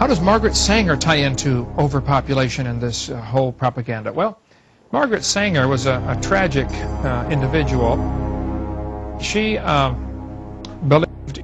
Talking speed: 125 wpm